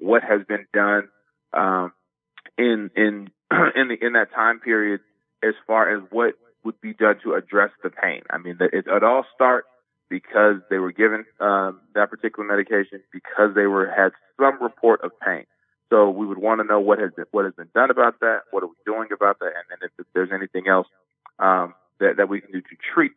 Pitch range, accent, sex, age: 95-115 Hz, American, male, 30-49